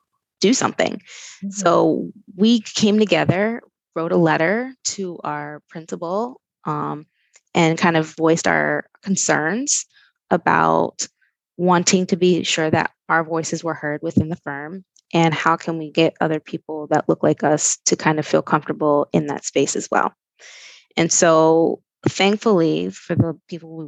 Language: English